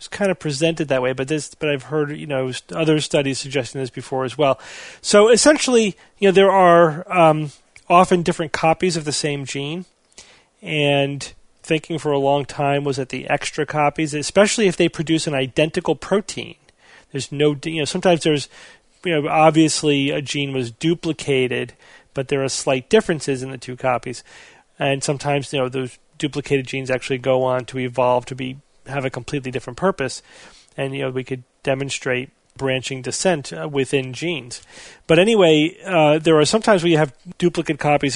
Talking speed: 180 wpm